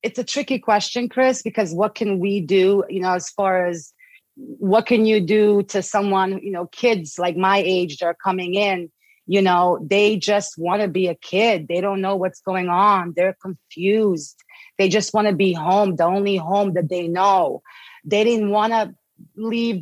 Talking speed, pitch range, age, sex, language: 195 wpm, 190-225 Hz, 30-49, female, English